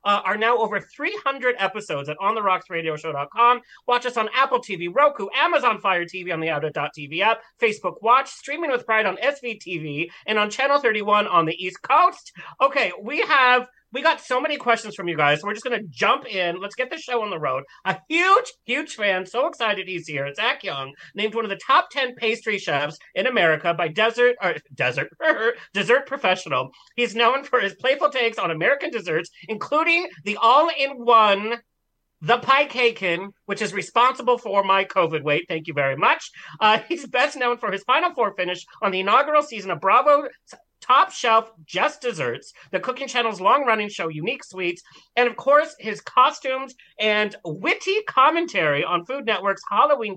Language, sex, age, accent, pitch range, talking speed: English, male, 40-59, American, 180-260 Hz, 180 wpm